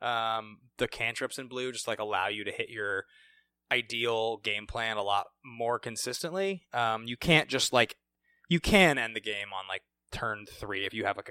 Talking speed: 195 wpm